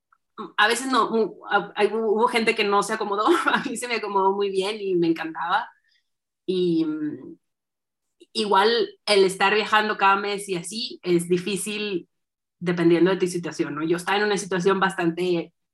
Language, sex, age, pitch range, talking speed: Spanish, female, 30-49, 180-230 Hz, 155 wpm